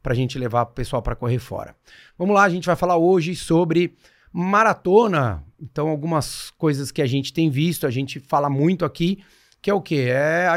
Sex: male